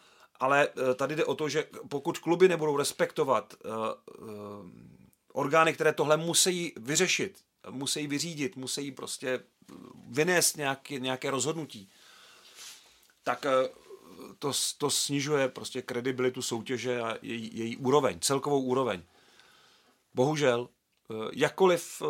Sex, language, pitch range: male, Czech, 125-145 Hz